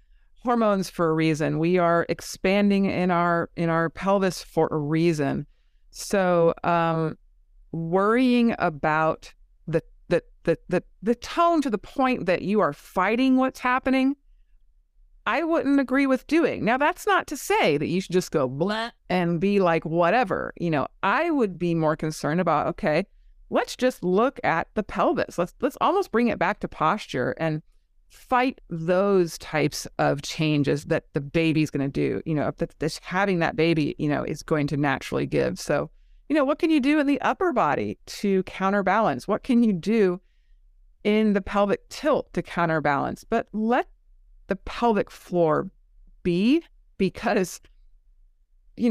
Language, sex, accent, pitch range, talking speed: English, female, American, 160-235 Hz, 165 wpm